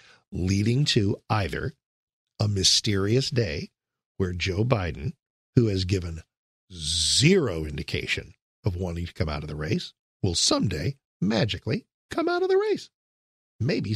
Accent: American